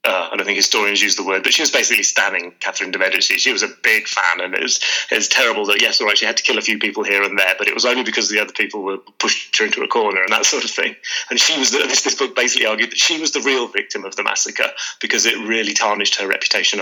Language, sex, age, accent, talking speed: English, male, 30-49, British, 305 wpm